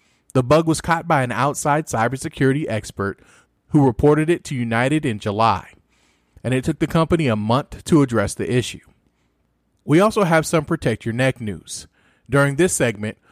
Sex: male